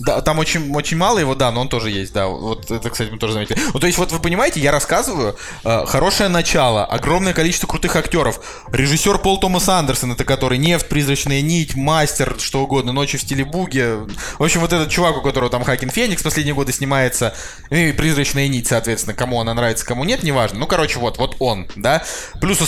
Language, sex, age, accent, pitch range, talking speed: Russian, male, 20-39, native, 125-160 Hz, 210 wpm